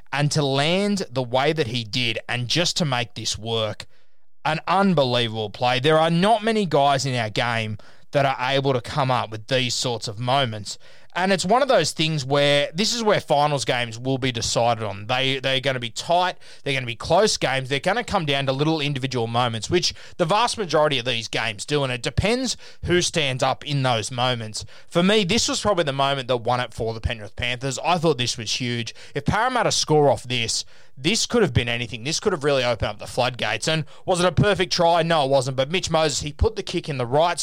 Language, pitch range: English, 125-165 Hz